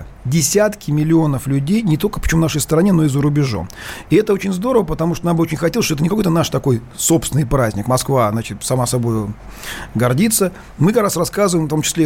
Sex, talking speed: male, 215 wpm